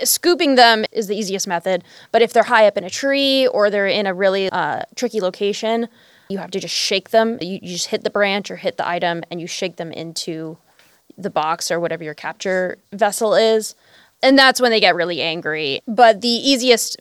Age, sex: 20-39, female